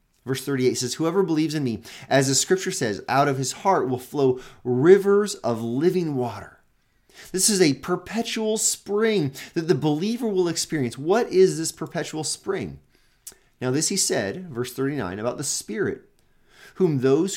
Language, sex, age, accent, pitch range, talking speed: English, male, 30-49, American, 125-180 Hz, 160 wpm